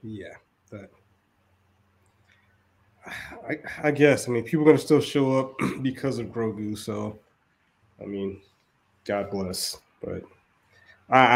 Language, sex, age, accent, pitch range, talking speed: English, male, 20-39, American, 100-125 Hz, 125 wpm